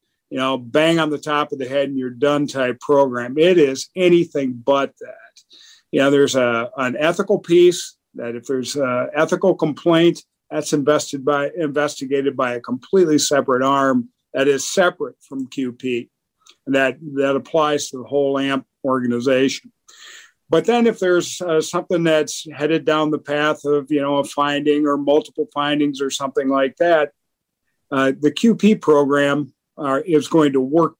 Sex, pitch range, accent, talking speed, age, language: male, 135-155 Hz, American, 165 wpm, 50-69, English